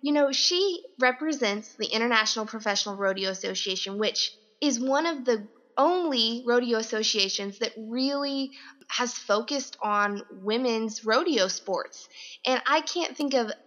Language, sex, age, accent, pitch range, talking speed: English, female, 20-39, American, 210-255 Hz, 130 wpm